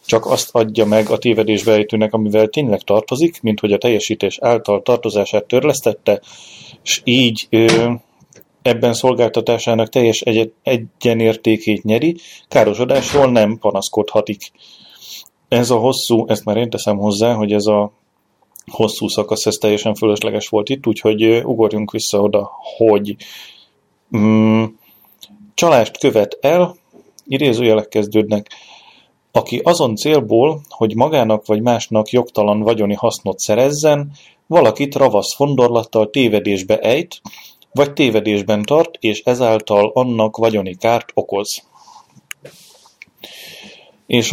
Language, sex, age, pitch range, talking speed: Hungarian, male, 30-49, 105-125 Hz, 110 wpm